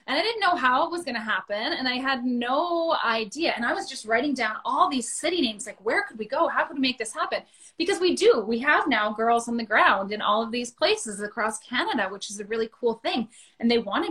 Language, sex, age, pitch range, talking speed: English, female, 20-39, 215-290 Hz, 260 wpm